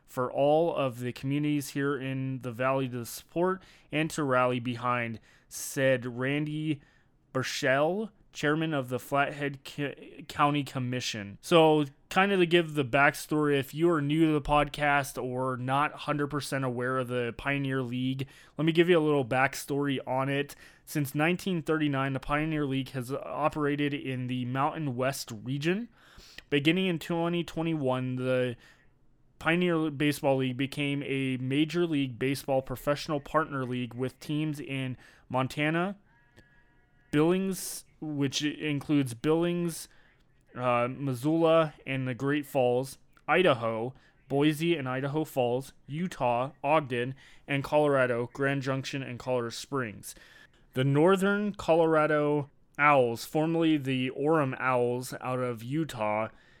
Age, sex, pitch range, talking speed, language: 20-39, male, 130-155 Hz, 130 wpm, English